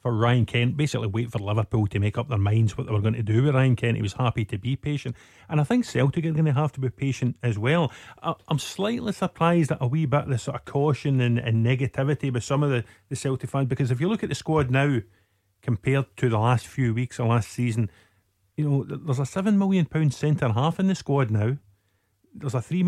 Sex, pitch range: male, 120-155 Hz